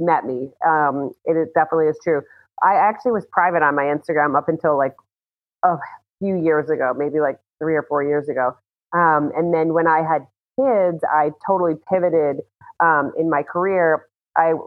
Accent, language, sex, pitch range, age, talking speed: American, English, female, 150-175 Hz, 30-49, 175 wpm